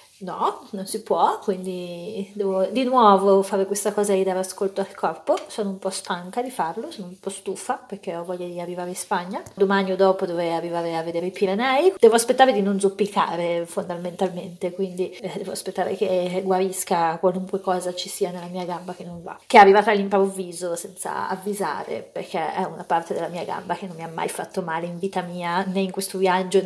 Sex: female